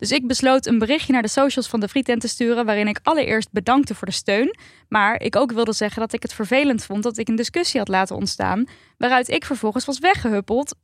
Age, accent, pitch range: 10-29, Dutch, 210-270 Hz